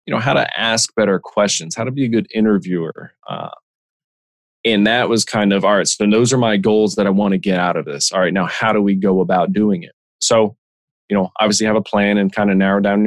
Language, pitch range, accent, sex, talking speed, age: English, 95-115 Hz, American, male, 255 wpm, 20-39